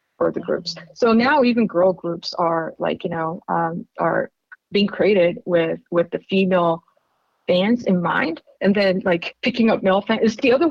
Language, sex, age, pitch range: English, female, 30-49, 180-235 Hz